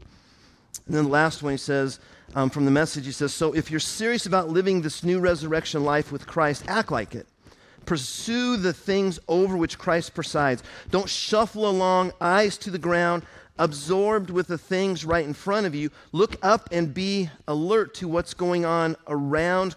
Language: English